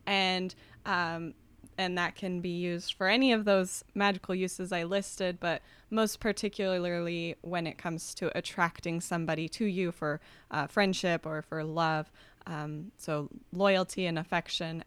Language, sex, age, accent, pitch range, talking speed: English, female, 20-39, American, 170-200 Hz, 150 wpm